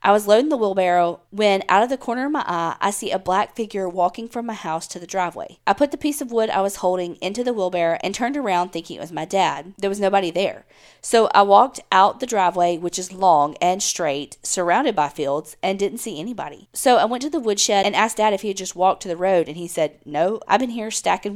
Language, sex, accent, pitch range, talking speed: English, female, American, 175-215 Hz, 260 wpm